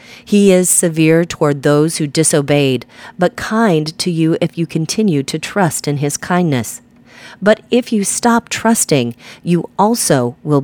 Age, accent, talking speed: 40-59, American, 150 wpm